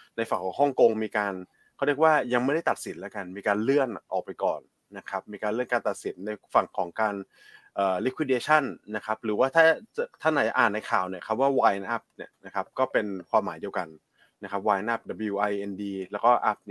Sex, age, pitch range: male, 20-39, 100-130 Hz